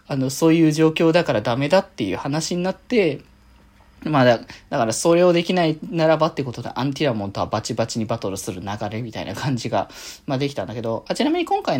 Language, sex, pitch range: Japanese, male, 120-185 Hz